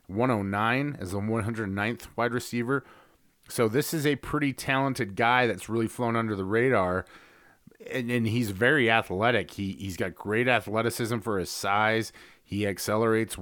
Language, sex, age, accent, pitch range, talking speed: English, male, 30-49, American, 100-125 Hz, 150 wpm